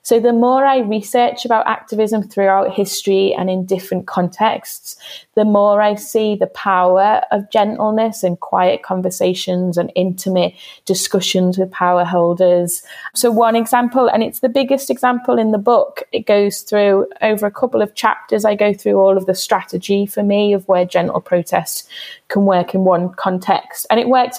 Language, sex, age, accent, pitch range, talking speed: English, female, 20-39, British, 185-220 Hz, 170 wpm